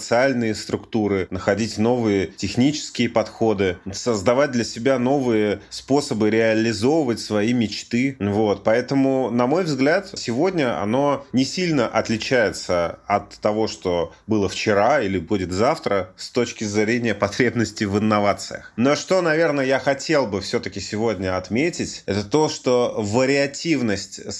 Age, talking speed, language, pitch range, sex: 30-49, 125 wpm, Russian, 105-135 Hz, male